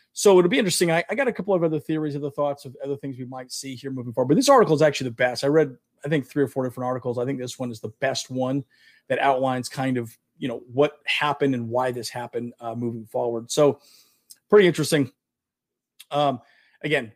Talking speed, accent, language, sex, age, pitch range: 240 wpm, American, English, male, 40-59, 125-155 Hz